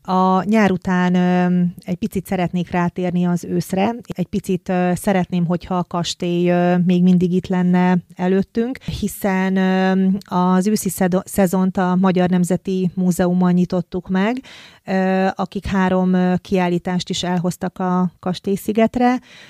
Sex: female